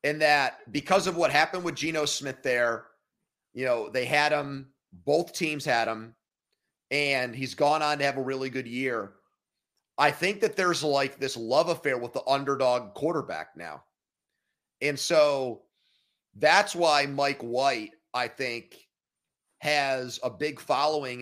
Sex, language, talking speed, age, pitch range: male, English, 155 wpm, 30-49, 130-160 Hz